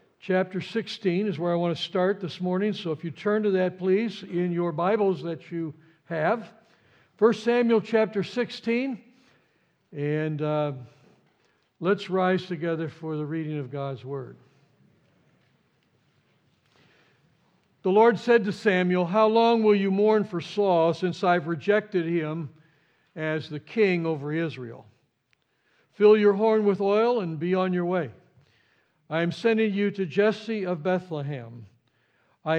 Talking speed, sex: 145 wpm, male